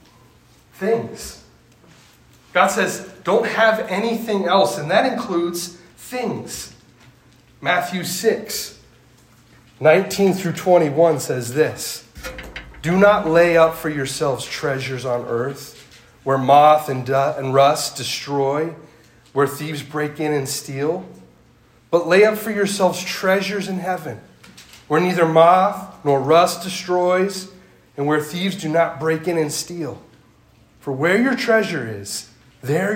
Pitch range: 130-190 Hz